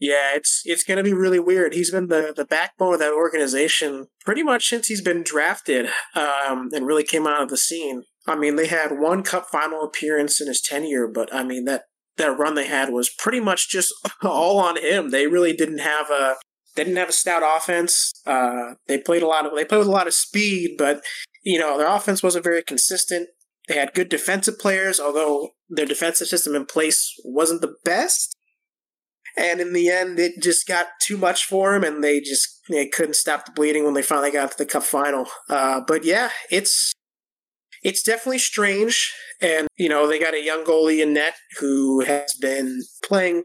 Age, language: 20-39, English